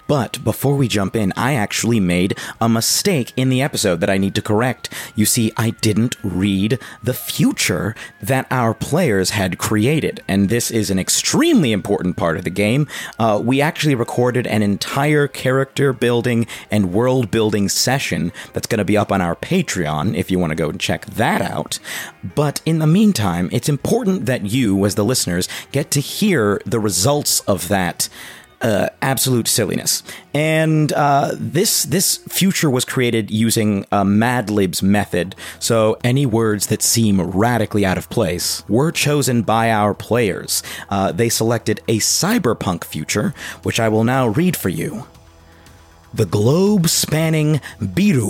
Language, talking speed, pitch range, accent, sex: English, 165 wpm, 100-140 Hz, American, male